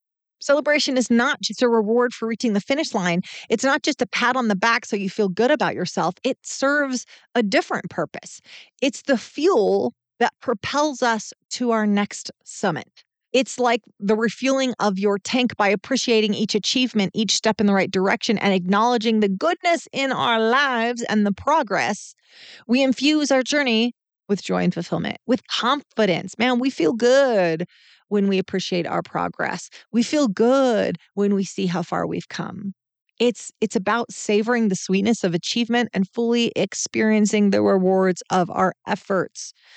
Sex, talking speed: female, 170 wpm